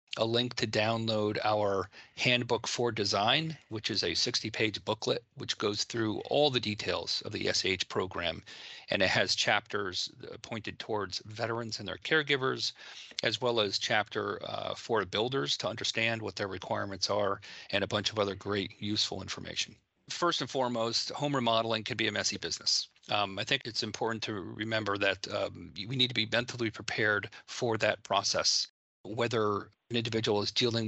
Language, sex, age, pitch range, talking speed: English, male, 40-59, 105-120 Hz, 170 wpm